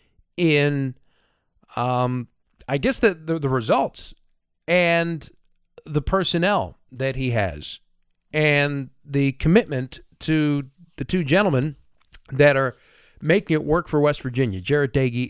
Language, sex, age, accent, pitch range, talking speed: English, male, 40-59, American, 125-160 Hz, 120 wpm